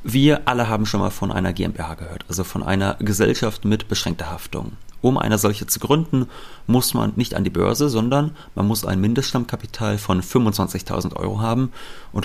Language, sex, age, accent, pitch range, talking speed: German, male, 30-49, German, 95-120 Hz, 180 wpm